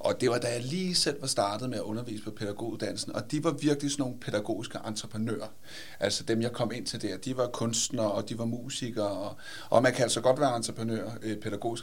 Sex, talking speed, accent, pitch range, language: male, 225 wpm, native, 110-140 Hz, Danish